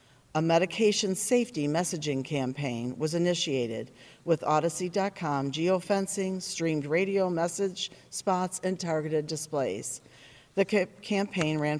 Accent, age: American, 50-69